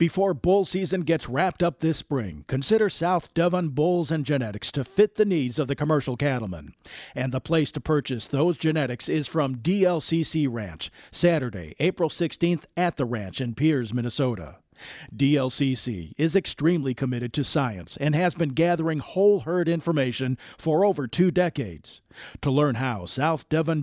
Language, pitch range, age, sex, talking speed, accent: English, 120-165 Hz, 50-69, male, 160 wpm, American